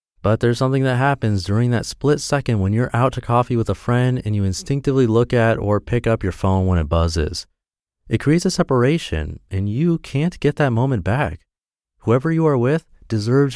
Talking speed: 205 wpm